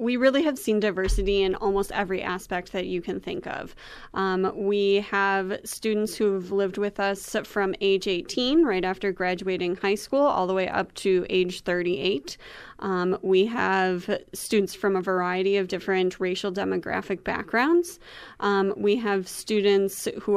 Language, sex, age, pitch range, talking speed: English, female, 20-39, 190-225 Hz, 160 wpm